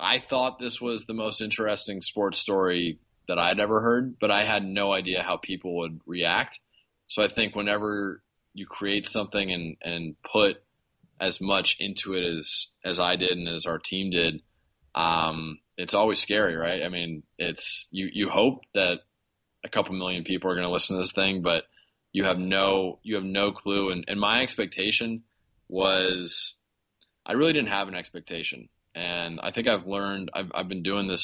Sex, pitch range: male, 85-100 Hz